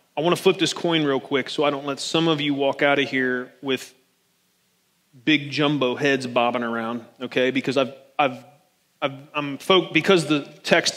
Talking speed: 190 wpm